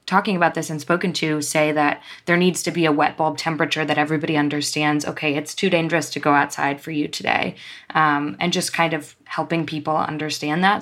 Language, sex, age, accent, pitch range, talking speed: English, female, 20-39, American, 150-165 Hz, 210 wpm